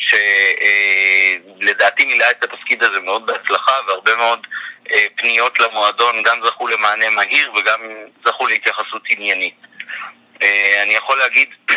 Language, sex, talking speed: Hebrew, male, 110 wpm